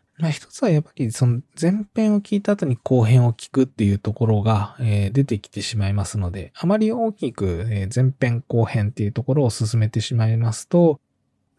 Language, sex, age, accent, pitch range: Japanese, male, 20-39, native, 105-155 Hz